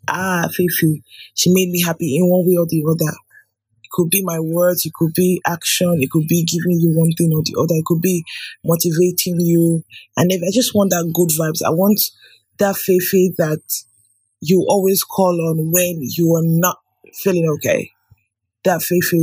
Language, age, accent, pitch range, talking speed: English, 20-39, Nigerian, 160-185 Hz, 190 wpm